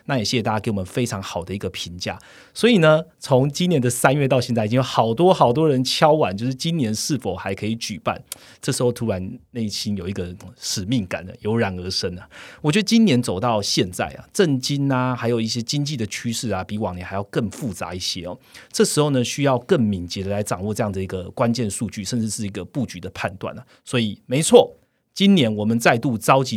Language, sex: Chinese, male